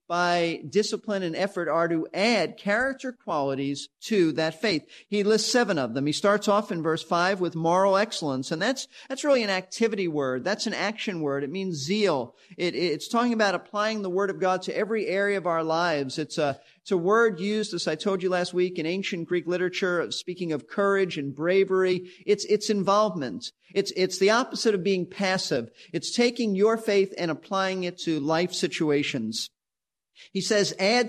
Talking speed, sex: 195 wpm, male